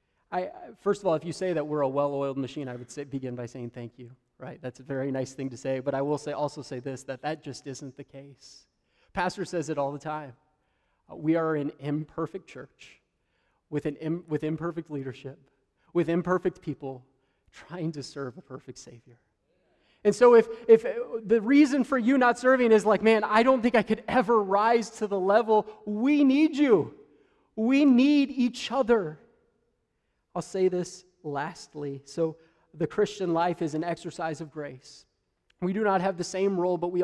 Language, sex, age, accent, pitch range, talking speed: English, male, 30-49, American, 145-220 Hz, 195 wpm